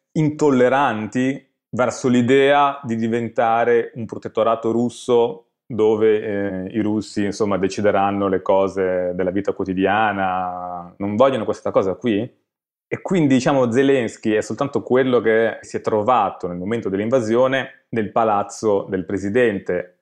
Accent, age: native, 20-39